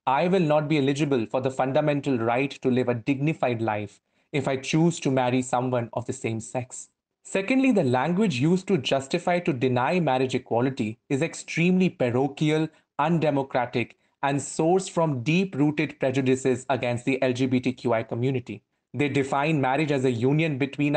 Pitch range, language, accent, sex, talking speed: 125-160 Hz, English, Indian, male, 155 wpm